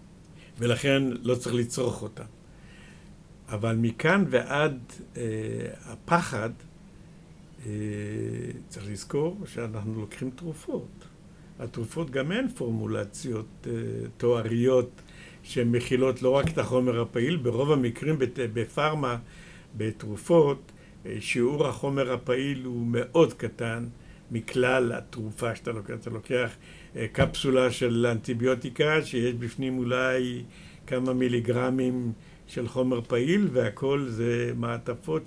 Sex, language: male, Hebrew